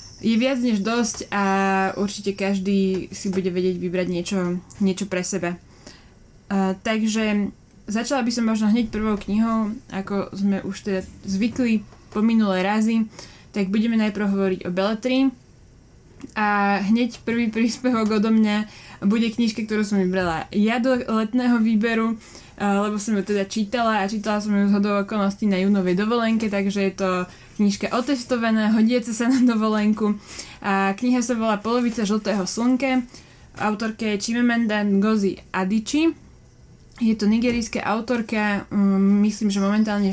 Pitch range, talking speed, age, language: 195-225 Hz, 140 wpm, 20-39, Slovak